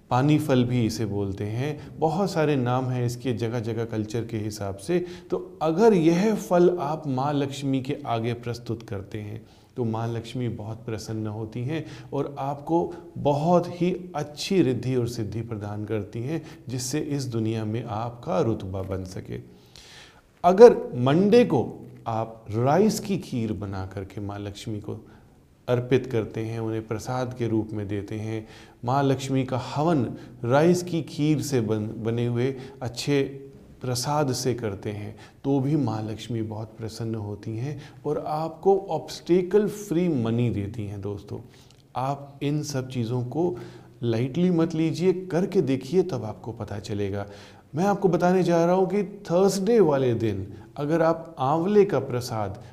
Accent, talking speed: native, 155 wpm